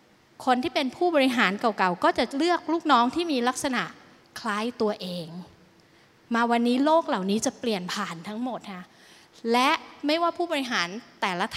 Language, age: Thai, 20-39